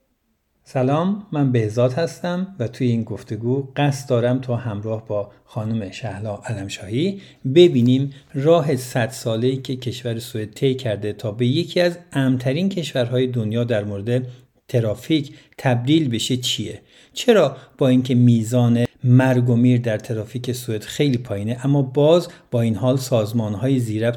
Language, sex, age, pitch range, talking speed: Persian, male, 50-69, 115-145 Hz, 145 wpm